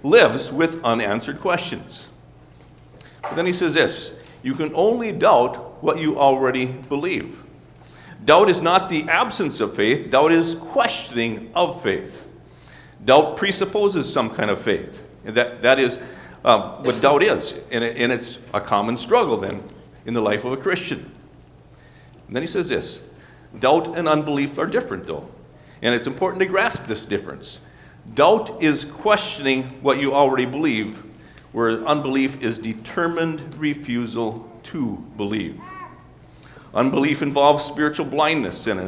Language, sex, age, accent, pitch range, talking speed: English, male, 60-79, American, 115-165 Hz, 140 wpm